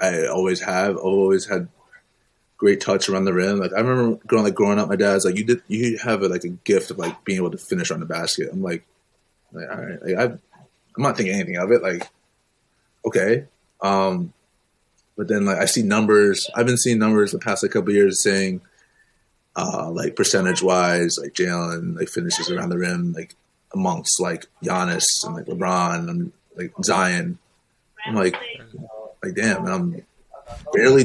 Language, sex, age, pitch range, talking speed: English, male, 20-39, 95-125 Hz, 185 wpm